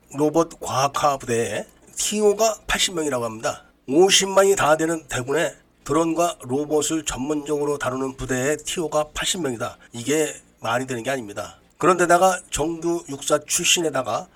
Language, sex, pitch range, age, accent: Korean, male, 140-185 Hz, 40-59, native